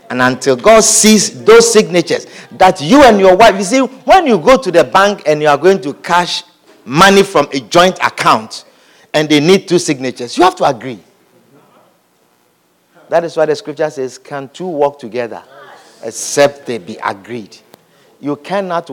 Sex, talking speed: male, 175 wpm